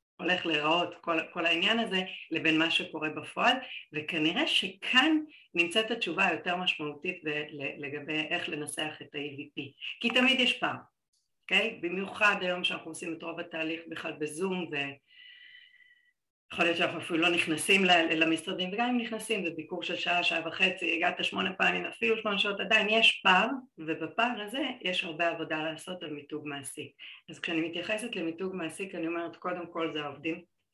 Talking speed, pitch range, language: 160 wpm, 155-190 Hz, Hebrew